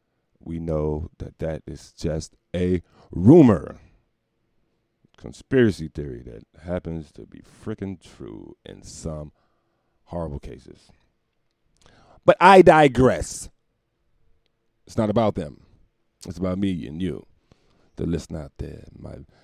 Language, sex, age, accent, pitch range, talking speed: English, male, 40-59, American, 80-105 Hz, 115 wpm